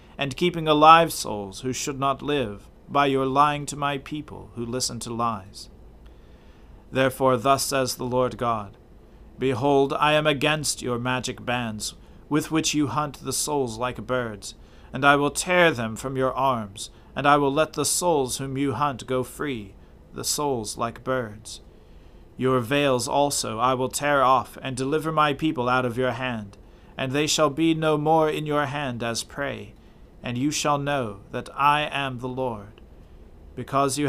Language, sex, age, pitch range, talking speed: English, male, 40-59, 115-145 Hz, 175 wpm